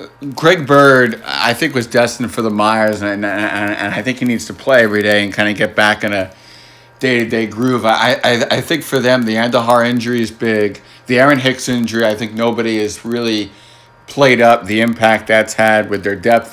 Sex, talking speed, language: male, 215 wpm, English